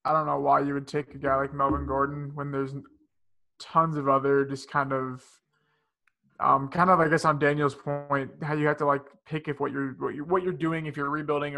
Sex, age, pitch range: male, 20-39, 135-150 Hz